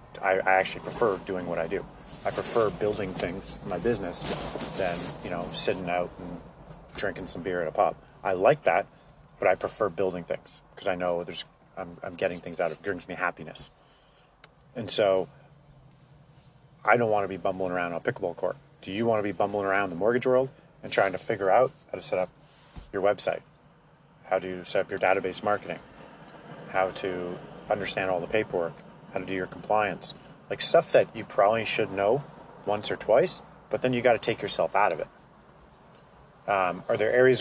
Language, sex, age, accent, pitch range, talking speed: English, male, 30-49, American, 95-115 Hz, 195 wpm